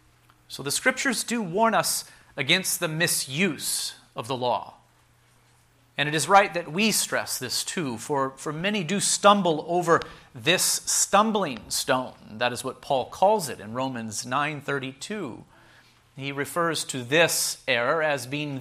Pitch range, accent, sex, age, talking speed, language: 120-170 Hz, American, male, 40-59, 150 wpm, English